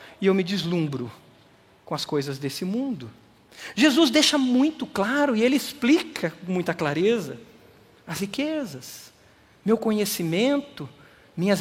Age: 50-69